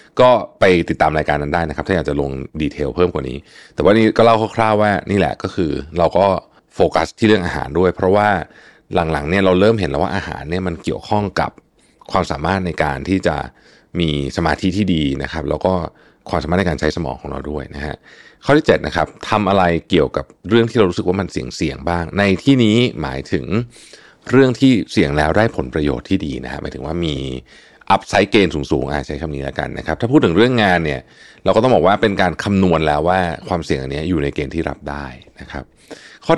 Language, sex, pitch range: Thai, male, 75-100 Hz